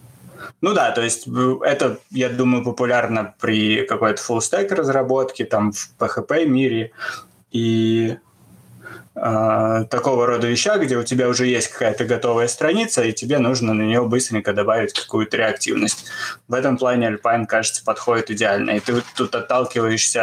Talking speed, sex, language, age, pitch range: 140 wpm, male, Russian, 20-39, 115-135 Hz